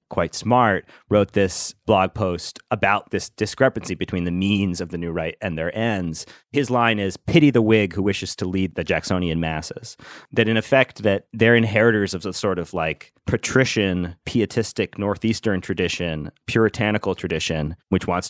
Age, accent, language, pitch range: 30-49, American, English, 90-115 Hz